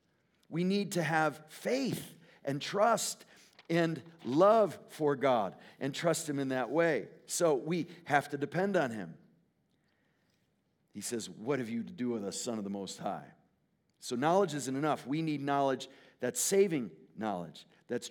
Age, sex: 50-69, male